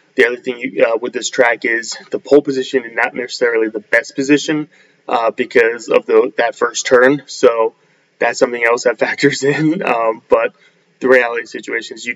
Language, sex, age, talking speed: English, male, 20-39, 200 wpm